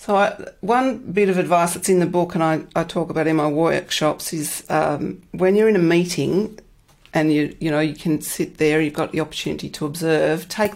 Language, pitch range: English, 150-185 Hz